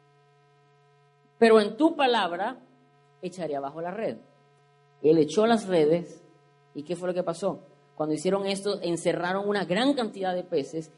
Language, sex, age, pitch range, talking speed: Spanish, female, 30-49, 145-185 Hz, 150 wpm